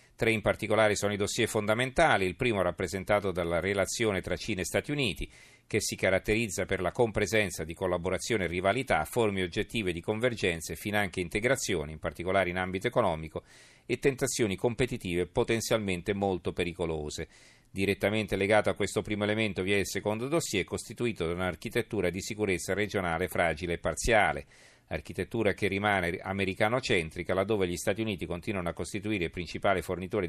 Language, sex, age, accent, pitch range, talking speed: Italian, male, 40-59, native, 90-110 Hz, 155 wpm